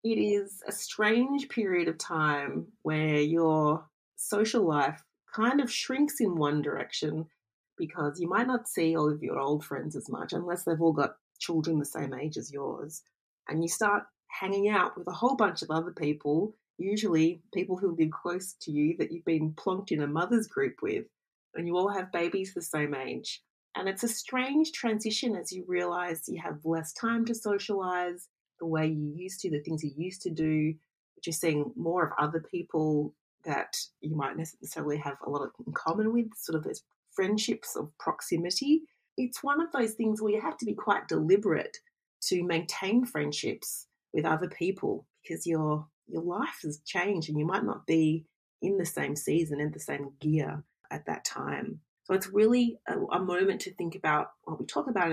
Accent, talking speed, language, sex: Australian, 190 wpm, English, female